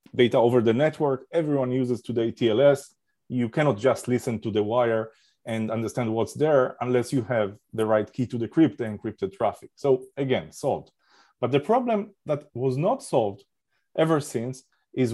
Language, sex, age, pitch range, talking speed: English, male, 30-49, 125-160 Hz, 170 wpm